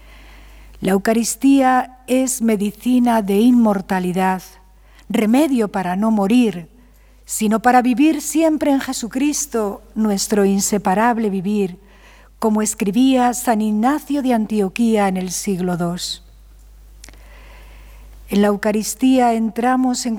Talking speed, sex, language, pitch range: 100 wpm, female, Spanish, 200-250 Hz